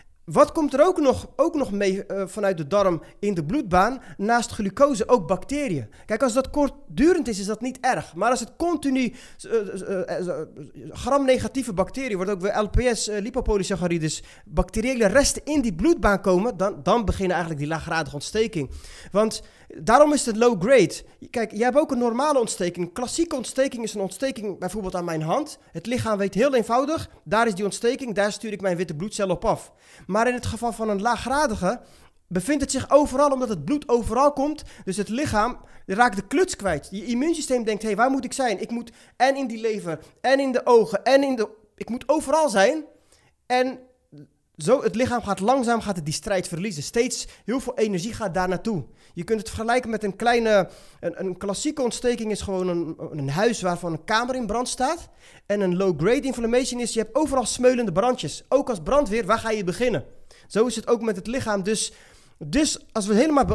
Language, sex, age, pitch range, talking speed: Dutch, male, 30-49, 195-260 Hz, 200 wpm